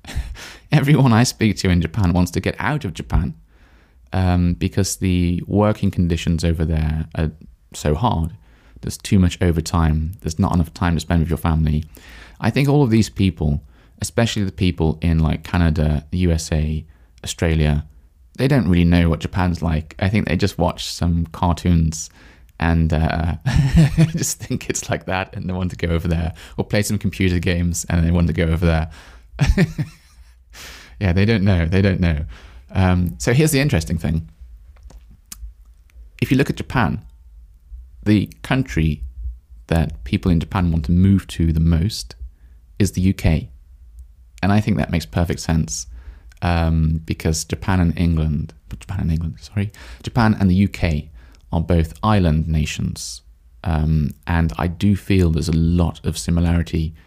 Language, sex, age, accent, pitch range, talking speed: English, male, 20-39, British, 75-95 Hz, 165 wpm